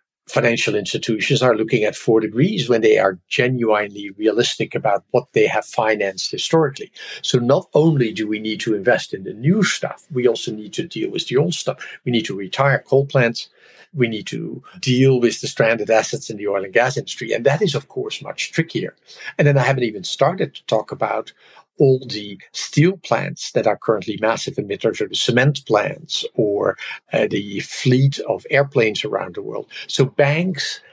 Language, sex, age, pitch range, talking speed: English, male, 50-69, 115-155 Hz, 190 wpm